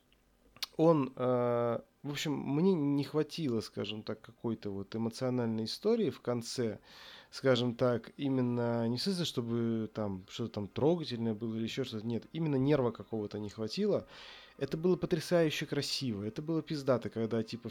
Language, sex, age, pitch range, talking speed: Russian, male, 20-39, 110-140 Hz, 150 wpm